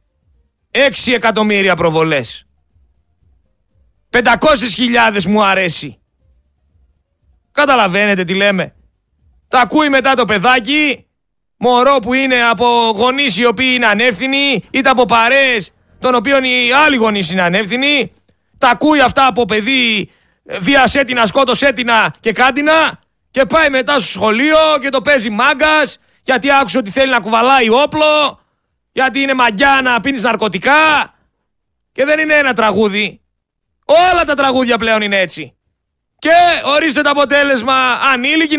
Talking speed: 130 wpm